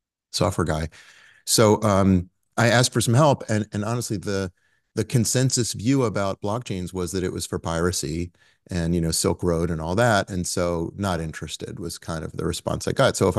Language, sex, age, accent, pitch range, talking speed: English, male, 30-49, American, 85-110 Hz, 200 wpm